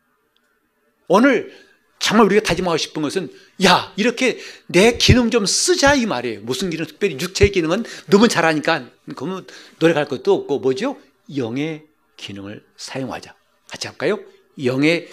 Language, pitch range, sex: Korean, 125-170 Hz, male